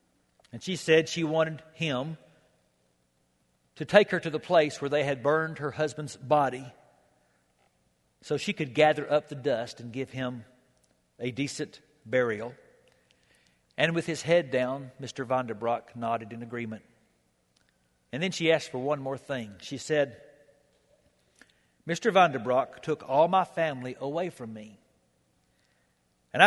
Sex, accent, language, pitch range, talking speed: male, American, English, 110-165 Hz, 140 wpm